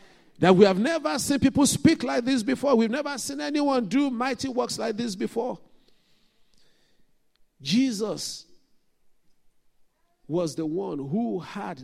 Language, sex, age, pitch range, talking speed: English, male, 50-69, 135-190 Hz, 130 wpm